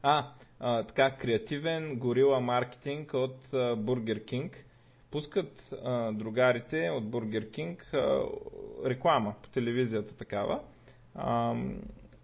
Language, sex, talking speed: Bulgarian, male, 110 wpm